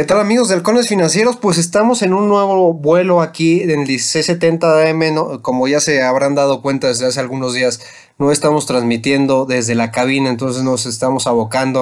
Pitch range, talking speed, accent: 125-155 Hz, 185 wpm, Mexican